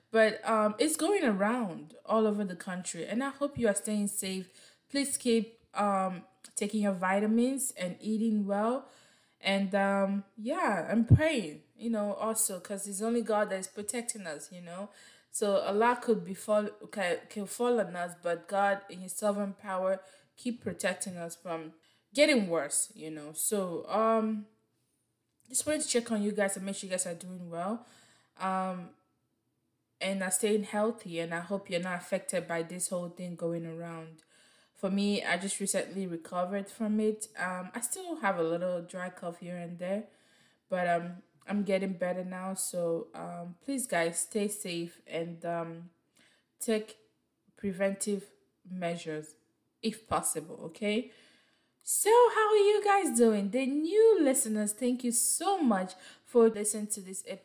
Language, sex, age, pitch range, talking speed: English, female, 20-39, 180-225 Hz, 165 wpm